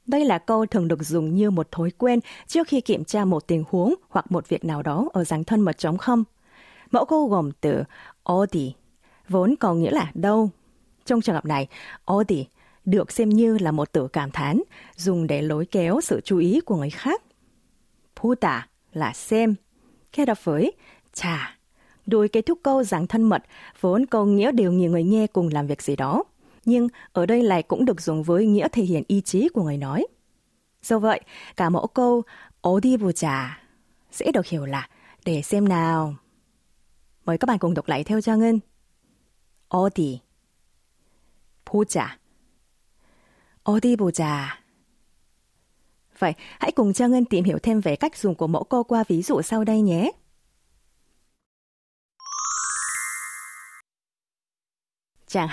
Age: 20-39